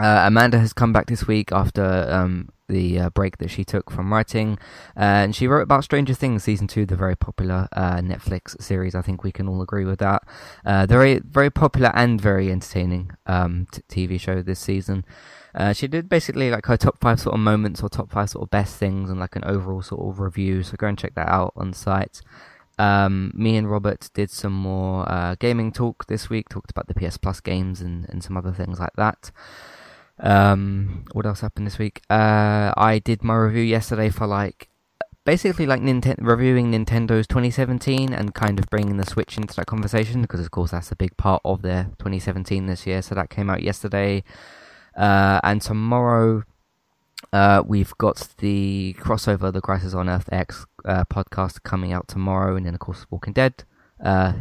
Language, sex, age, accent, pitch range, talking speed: English, male, 20-39, British, 95-110 Hz, 200 wpm